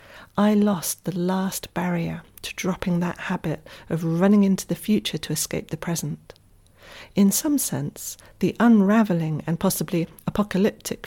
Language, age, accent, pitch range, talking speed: English, 40-59, British, 155-195 Hz, 140 wpm